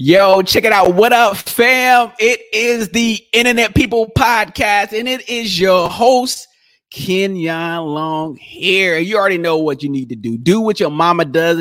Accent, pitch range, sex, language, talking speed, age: American, 155-205 Hz, male, English, 175 wpm, 30-49